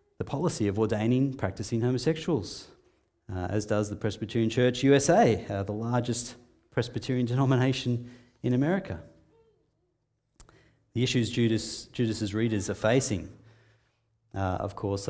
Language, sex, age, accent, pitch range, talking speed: English, male, 30-49, Australian, 95-125 Hz, 115 wpm